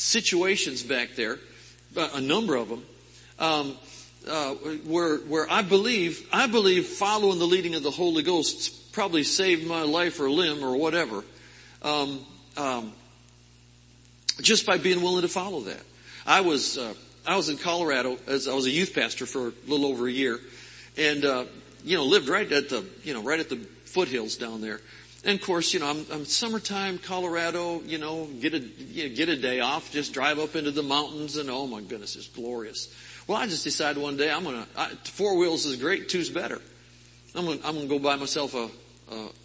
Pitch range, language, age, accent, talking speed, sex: 130-165 Hz, English, 50-69, American, 195 wpm, male